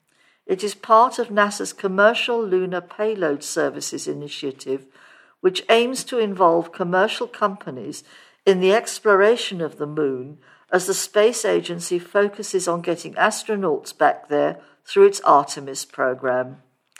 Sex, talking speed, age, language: female, 125 wpm, 60-79, English